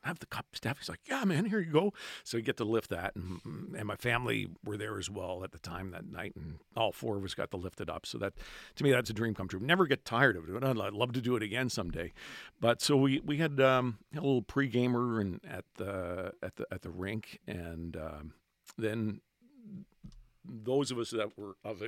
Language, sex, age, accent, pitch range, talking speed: English, male, 50-69, American, 100-130 Hz, 240 wpm